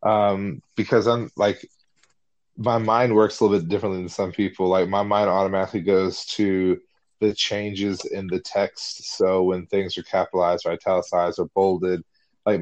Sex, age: male, 20-39